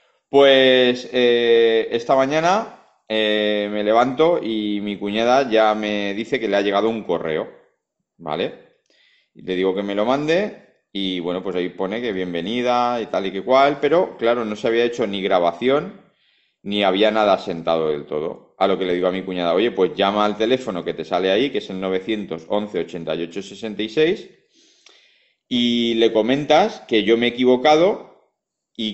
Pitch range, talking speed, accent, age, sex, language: 95-125 Hz, 170 wpm, Spanish, 30-49, male, Spanish